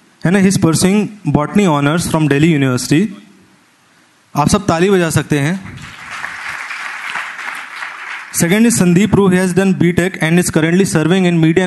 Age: 20-39